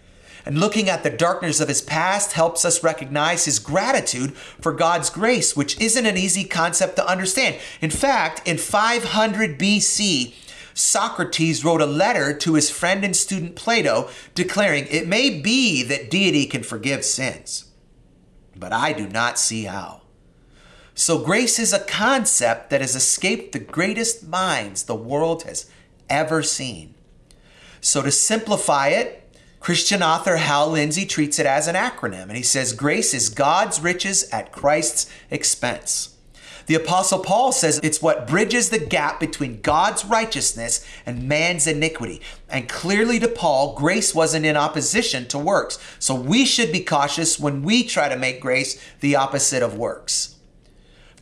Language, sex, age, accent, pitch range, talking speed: English, male, 40-59, American, 135-195 Hz, 155 wpm